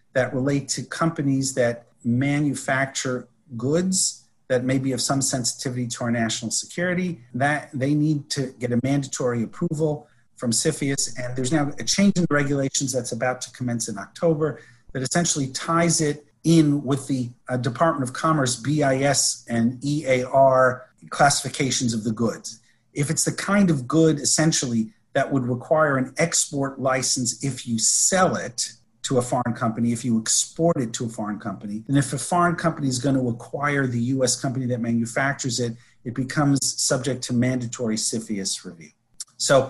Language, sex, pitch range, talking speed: English, male, 120-150 Hz, 165 wpm